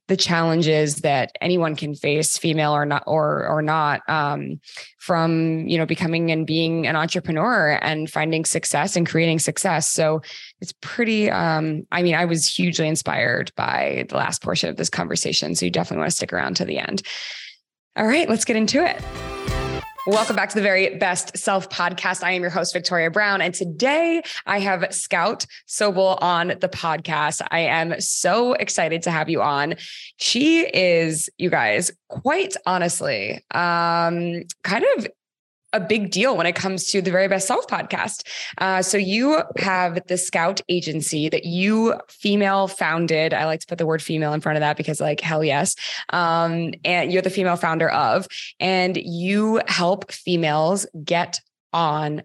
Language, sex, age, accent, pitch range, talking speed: English, female, 20-39, American, 155-190 Hz, 175 wpm